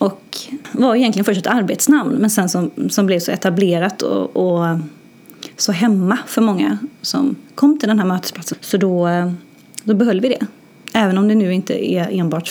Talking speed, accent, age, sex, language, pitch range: 180 wpm, native, 30-49, female, Swedish, 175-220 Hz